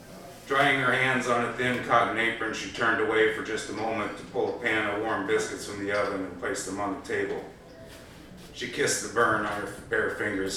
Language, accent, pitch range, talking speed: English, American, 95-110 Hz, 220 wpm